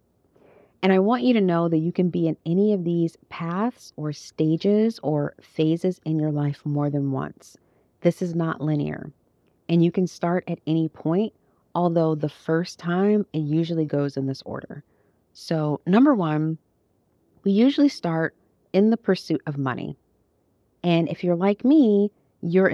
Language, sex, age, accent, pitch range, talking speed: English, female, 30-49, American, 155-195 Hz, 165 wpm